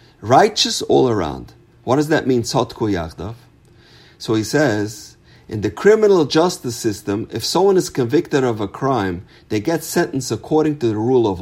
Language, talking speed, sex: English, 160 wpm, male